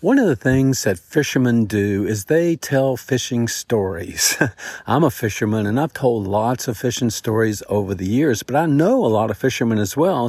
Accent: American